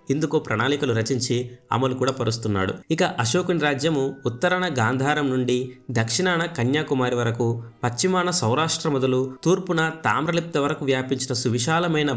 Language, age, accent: Telugu, 30-49, native